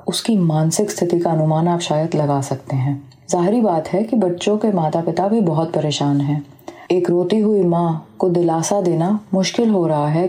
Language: Hindi